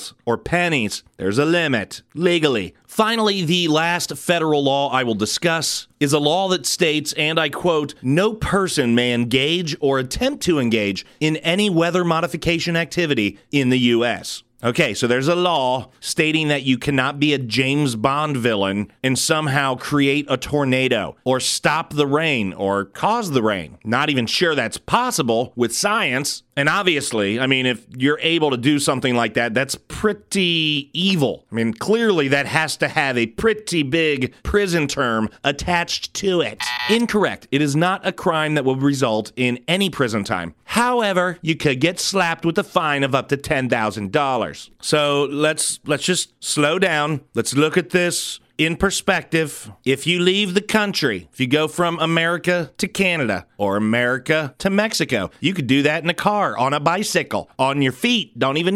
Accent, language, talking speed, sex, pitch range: American, English, 175 wpm, male, 125-170 Hz